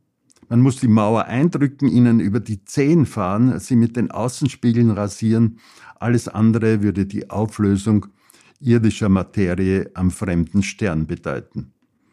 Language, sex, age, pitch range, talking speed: German, male, 60-79, 100-120 Hz, 130 wpm